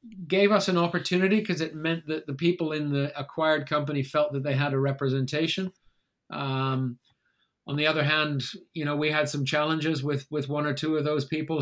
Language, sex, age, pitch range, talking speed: English, male, 40-59, 140-165 Hz, 200 wpm